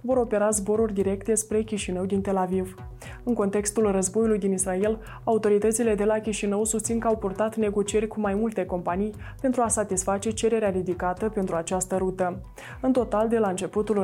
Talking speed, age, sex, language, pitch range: 170 wpm, 20-39, female, Romanian, 190-220 Hz